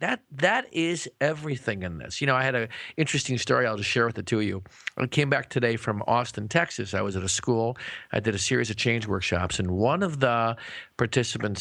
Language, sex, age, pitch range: English, male, 50-69, 115-145 Hz